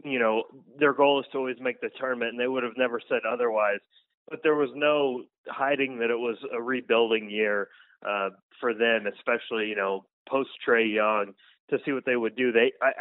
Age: 30-49